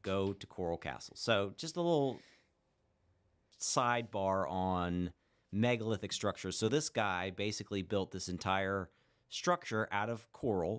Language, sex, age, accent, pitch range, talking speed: English, male, 40-59, American, 90-115 Hz, 130 wpm